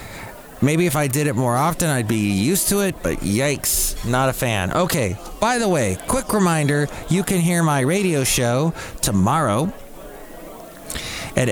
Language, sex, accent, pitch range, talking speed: English, male, American, 110-150 Hz, 160 wpm